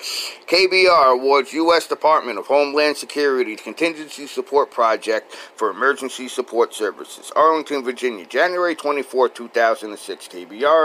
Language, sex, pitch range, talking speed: English, male, 125-170 Hz, 110 wpm